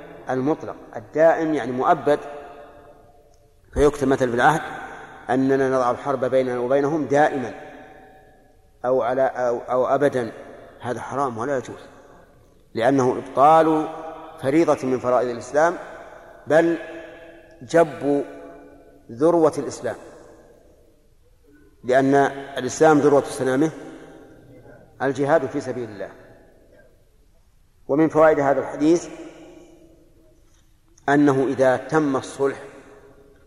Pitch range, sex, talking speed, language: 120-150 Hz, male, 85 wpm, Arabic